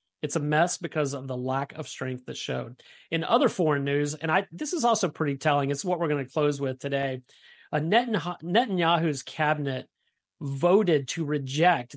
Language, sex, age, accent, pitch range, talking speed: English, male, 30-49, American, 135-160 Hz, 185 wpm